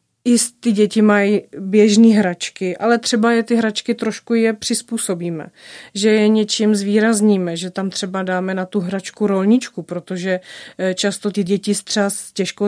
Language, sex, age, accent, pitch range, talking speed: Czech, female, 30-49, native, 185-210 Hz, 150 wpm